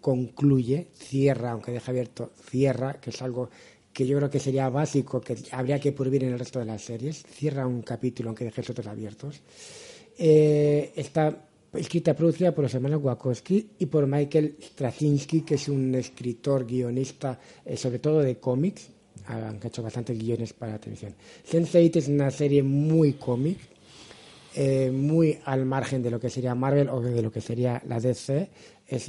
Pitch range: 125-150 Hz